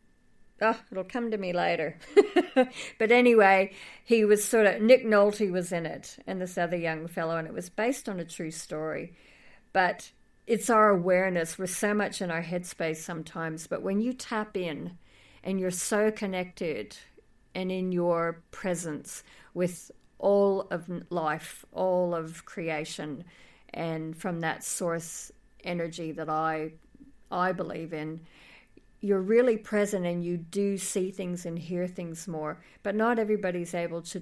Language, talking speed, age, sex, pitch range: English, 155 wpm, 50-69, female, 170-205 Hz